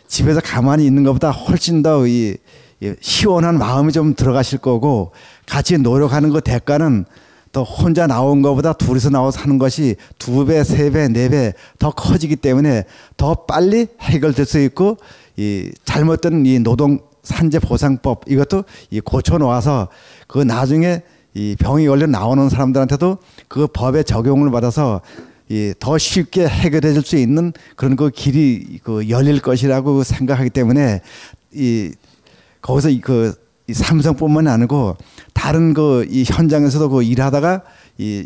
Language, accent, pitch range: Korean, native, 125-150 Hz